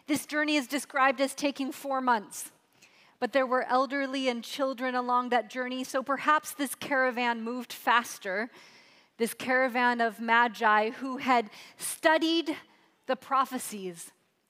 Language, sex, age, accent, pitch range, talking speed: English, female, 30-49, American, 235-285 Hz, 130 wpm